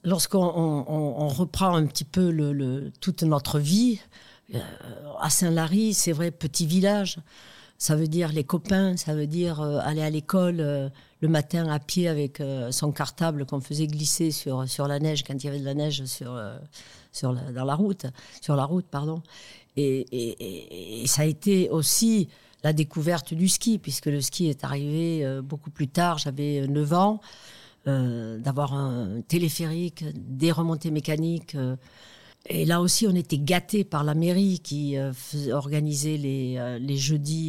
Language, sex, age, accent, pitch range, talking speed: French, female, 60-79, French, 140-165 Hz, 180 wpm